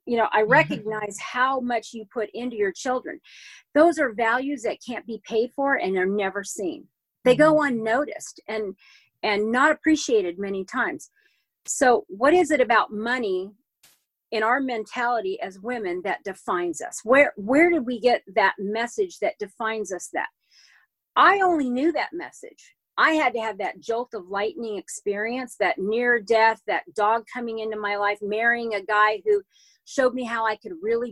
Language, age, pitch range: English, 40-59, 210-270 Hz